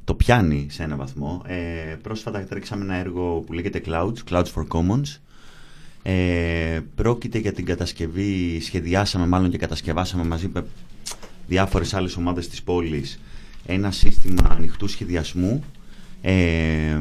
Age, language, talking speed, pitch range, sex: 30-49, Greek, 130 wpm, 80-100 Hz, male